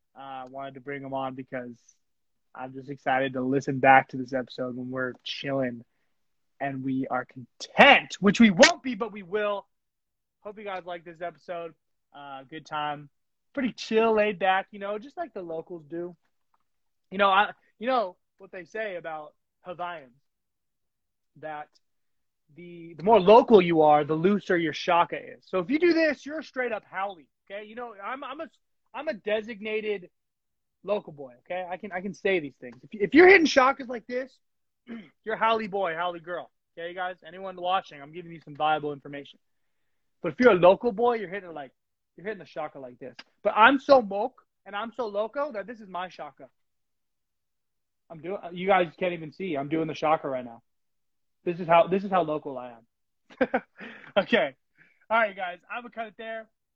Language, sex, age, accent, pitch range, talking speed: English, male, 30-49, American, 150-215 Hz, 190 wpm